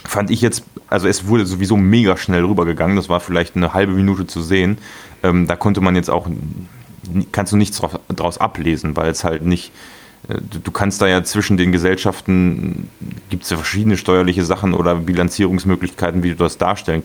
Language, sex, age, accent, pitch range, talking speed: German, male, 30-49, German, 90-105 Hz, 180 wpm